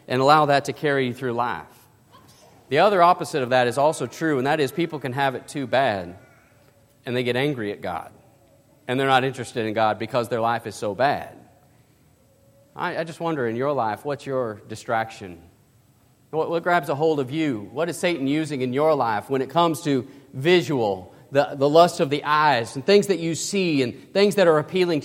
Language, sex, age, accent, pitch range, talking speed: English, male, 40-59, American, 120-160 Hz, 210 wpm